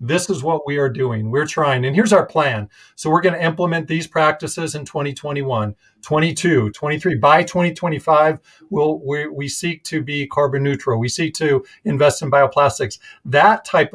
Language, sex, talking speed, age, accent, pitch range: English, male, 170 wpm, 40-59, American, 130-160 Hz